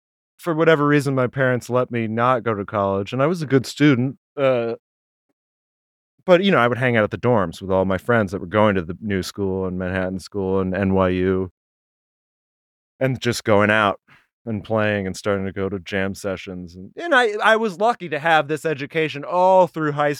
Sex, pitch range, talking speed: male, 110-165 Hz, 210 wpm